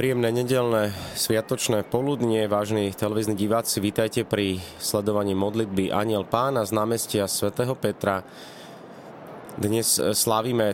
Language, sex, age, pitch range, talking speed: Slovak, male, 30-49, 95-110 Hz, 105 wpm